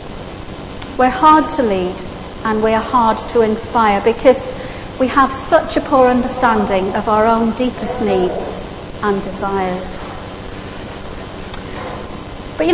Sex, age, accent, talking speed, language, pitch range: female, 40-59, British, 120 wpm, English, 205-295 Hz